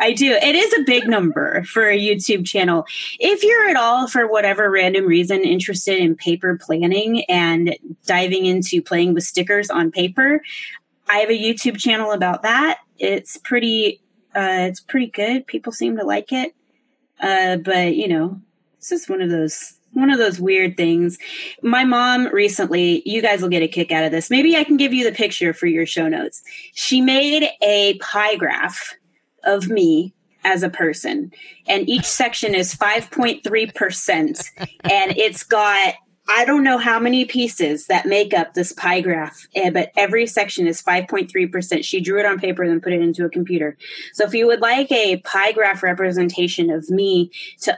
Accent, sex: American, female